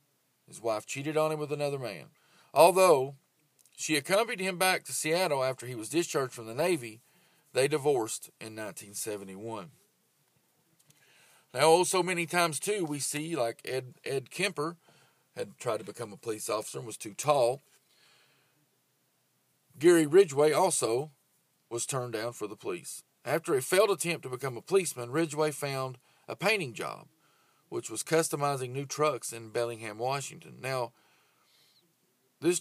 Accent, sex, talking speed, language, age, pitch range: American, male, 150 wpm, English, 40-59, 125-165 Hz